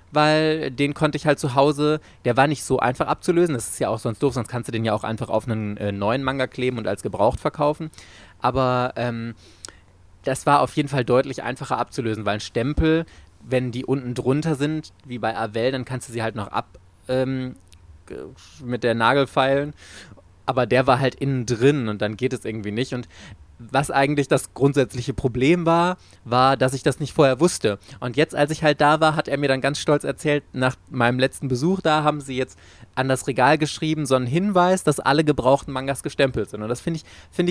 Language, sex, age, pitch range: German, male, 20-39, 120-155 Hz